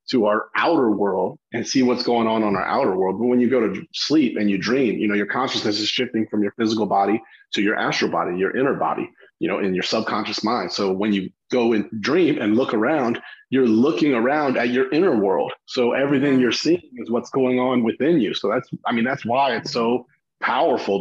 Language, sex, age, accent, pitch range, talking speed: English, male, 30-49, American, 105-130 Hz, 230 wpm